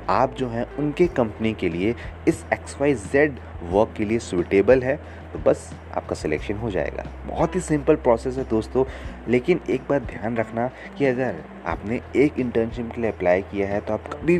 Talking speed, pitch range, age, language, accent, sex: 190 wpm, 90-130 Hz, 30-49, Hindi, native, male